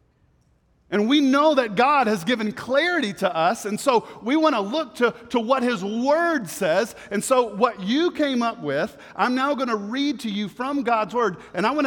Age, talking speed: 40-59, 210 wpm